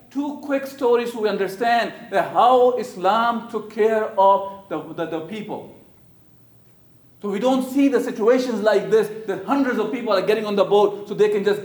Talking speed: 190 wpm